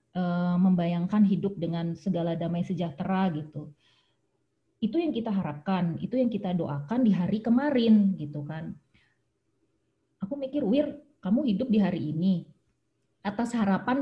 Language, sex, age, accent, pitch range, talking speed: Indonesian, female, 20-39, native, 180-225 Hz, 130 wpm